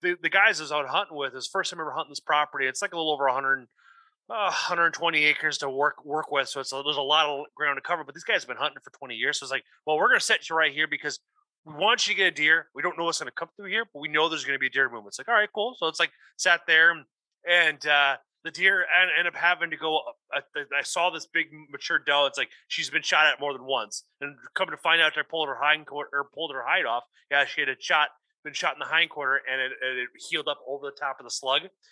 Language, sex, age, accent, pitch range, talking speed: English, male, 30-49, American, 140-170 Hz, 300 wpm